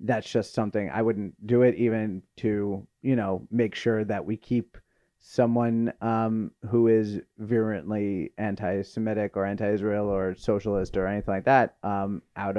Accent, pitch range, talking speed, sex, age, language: American, 100-115 Hz, 155 wpm, male, 30-49, English